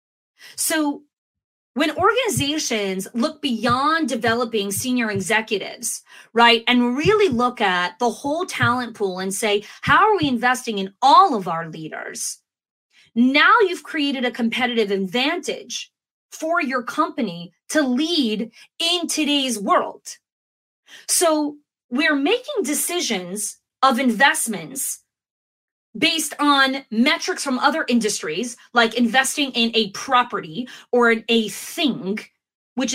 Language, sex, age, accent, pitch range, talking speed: English, female, 30-49, American, 225-295 Hz, 115 wpm